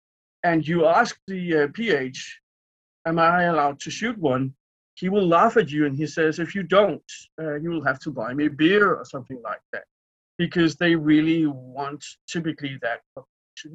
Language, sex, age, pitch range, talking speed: English, male, 50-69, 145-195 Hz, 185 wpm